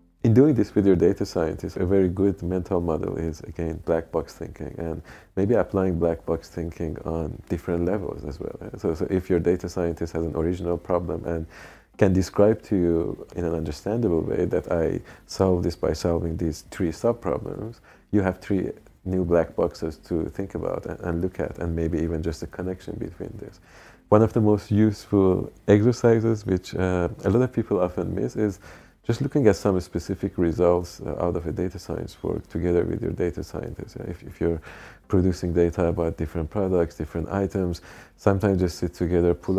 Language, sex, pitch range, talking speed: English, male, 85-95 Hz, 185 wpm